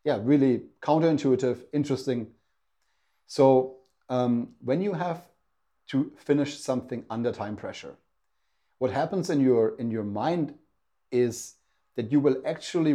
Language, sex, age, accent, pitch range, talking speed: English, male, 30-49, German, 110-135 Hz, 125 wpm